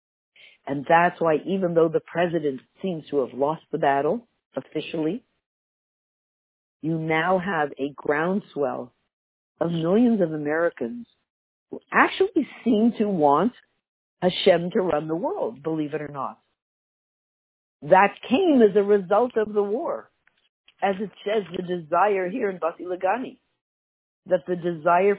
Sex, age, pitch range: female, 50-69, 160-200 Hz